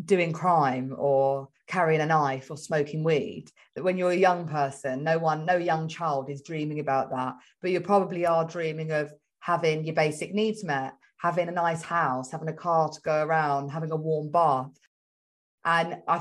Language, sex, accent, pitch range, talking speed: English, female, British, 155-185 Hz, 190 wpm